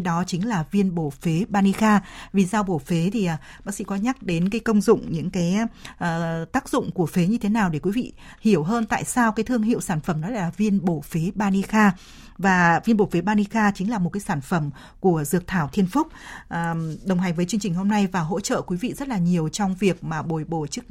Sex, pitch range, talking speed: female, 175-215 Hz, 240 wpm